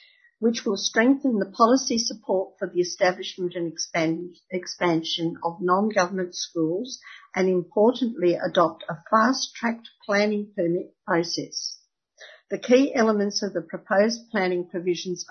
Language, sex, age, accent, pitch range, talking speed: English, female, 50-69, Australian, 175-225 Hz, 120 wpm